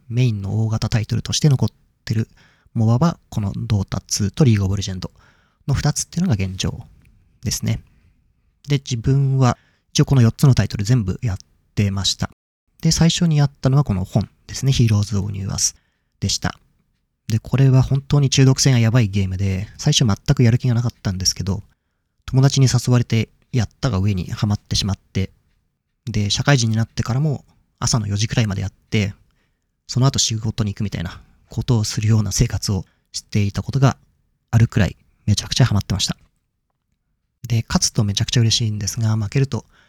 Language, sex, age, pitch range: Japanese, male, 30-49, 100-125 Hz